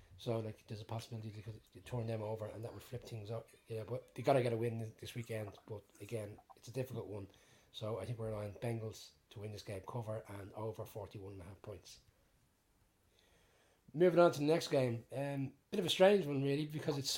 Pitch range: 115-140 Hz